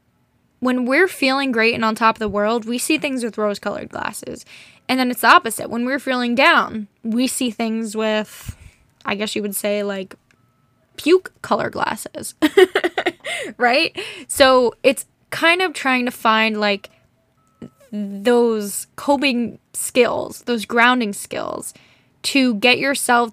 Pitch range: 205-250 Hz